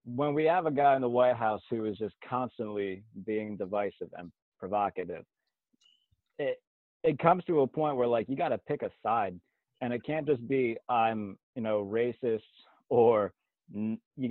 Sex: male